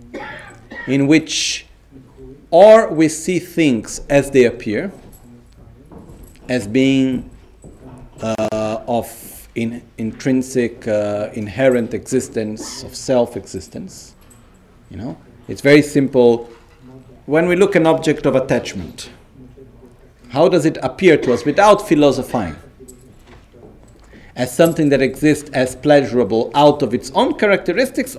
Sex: male